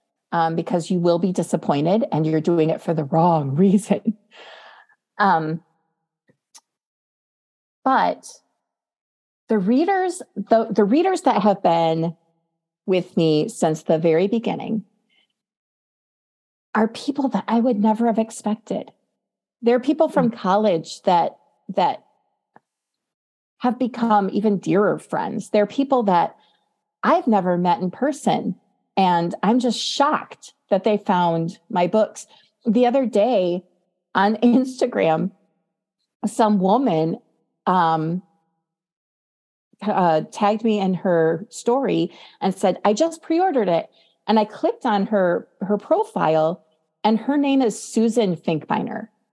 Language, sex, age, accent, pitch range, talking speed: English, female, 40-59, American, 175-235 Hz, 120 wpm